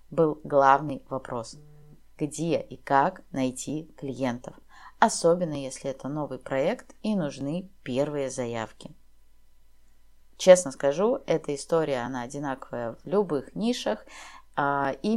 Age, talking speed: 20-39, 105 wpm